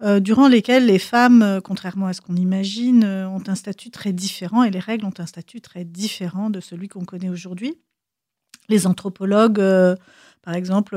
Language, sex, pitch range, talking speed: French, female, 190-225 Hz, 170 wpm